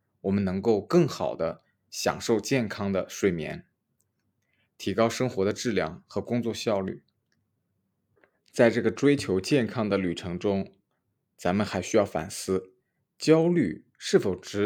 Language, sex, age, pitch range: Chinese, male, 20-39, 95-120 Hz